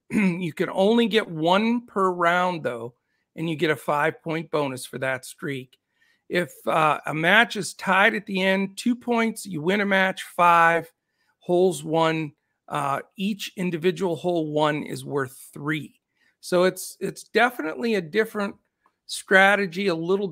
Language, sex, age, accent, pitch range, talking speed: English, male, 50-69, American, 155-195 Hz, 155 wpm